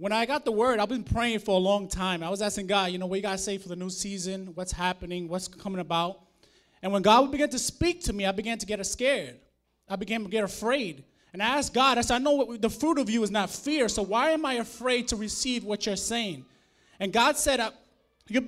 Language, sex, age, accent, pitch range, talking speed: English, male, 20-39, American, 205-270 Hz, 255 wpm